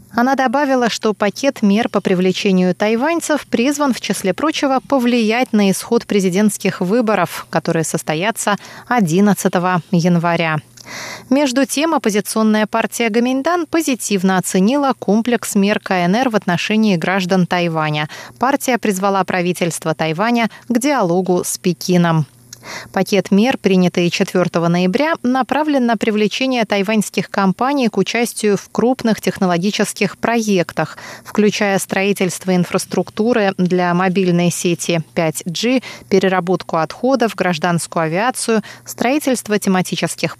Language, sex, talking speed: Russian, female, 105 wpm